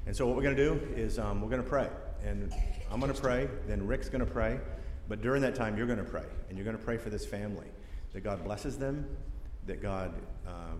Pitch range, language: 80-110 Hz, English